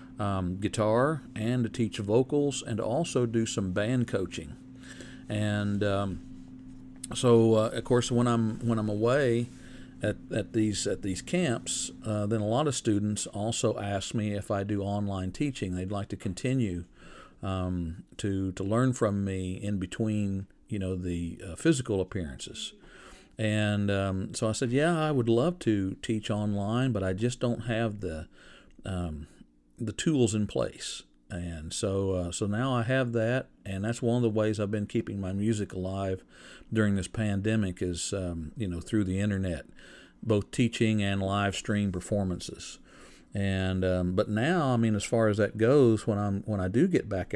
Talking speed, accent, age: 175 wpm, American, 50-69